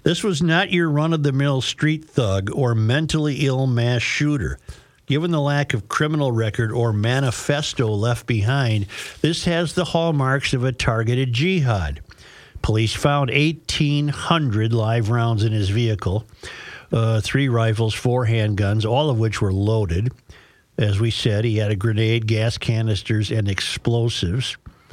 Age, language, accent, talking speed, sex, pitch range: 50-69, English, American, 140 wpm, male, 110-140 Hz